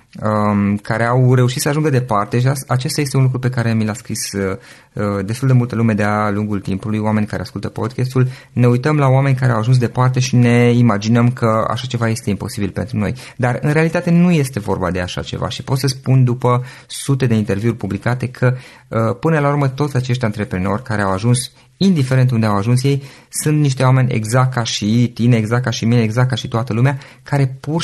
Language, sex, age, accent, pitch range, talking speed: Romanian, male, 20-39, native, 110-135 Hz, 215 wpm